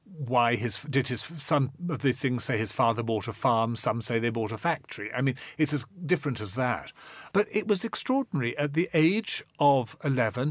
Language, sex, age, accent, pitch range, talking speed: English, male, 40-59, British, 115-155 Hz, 205 wpm